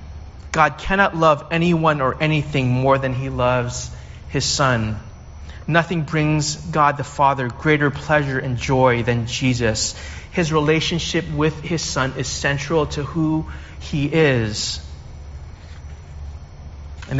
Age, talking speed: 30-49, 120 wpm